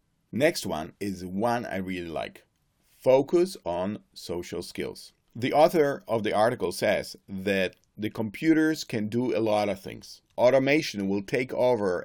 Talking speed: 150 wpm